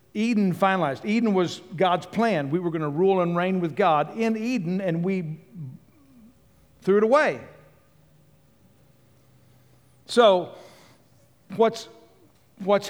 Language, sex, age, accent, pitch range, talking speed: English, male, 60-79, American, 165-205 Hz, 115 wpm